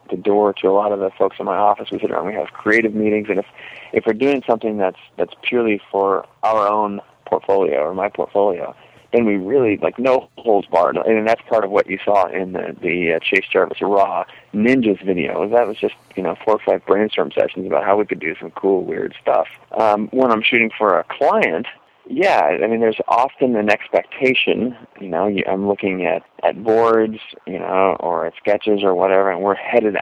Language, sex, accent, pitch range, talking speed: English, male, American, 100-115 Hz, 215 wpm